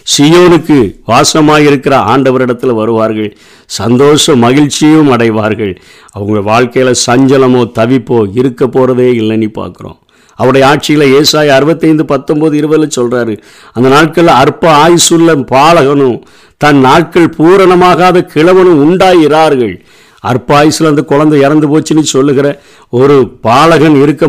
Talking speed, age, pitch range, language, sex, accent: 105 wpm, 50-69, 120-155 Hz, Tamil, male, native